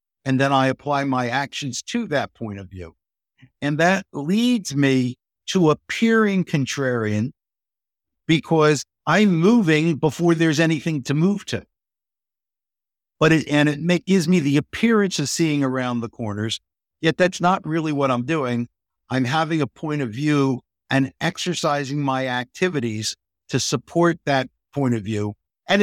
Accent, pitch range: American, 120-165 Hz